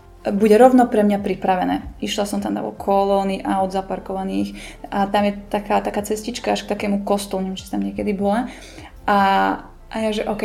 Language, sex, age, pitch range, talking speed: Slovak, female, 20-39, 200-230 Hz, 185 wpm